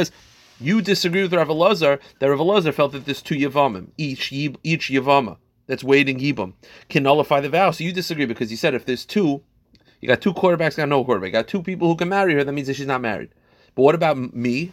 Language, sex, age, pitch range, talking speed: English, male, 30-49, 120-165 Hz, 230 wpm